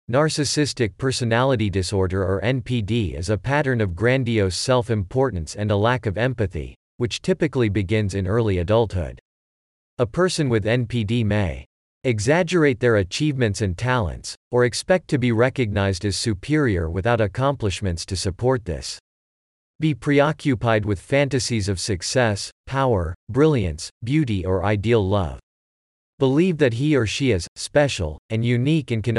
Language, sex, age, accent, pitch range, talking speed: English, male, 40-59, American, 95-130 Hz, 140 wpm